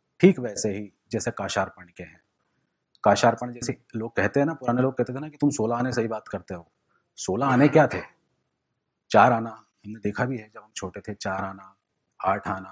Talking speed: 190 wpm